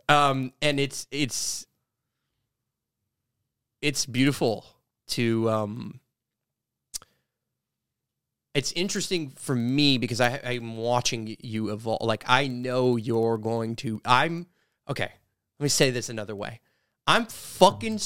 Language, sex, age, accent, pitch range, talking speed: English, male, 30-49, American, 115-145 Hz, 115 wpm